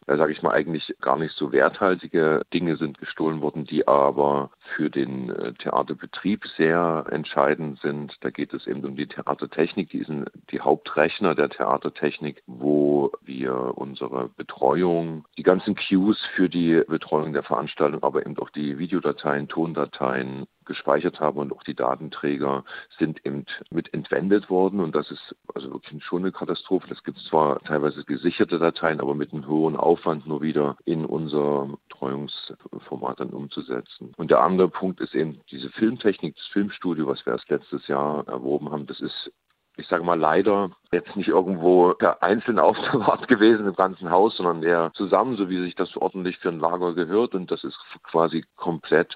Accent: German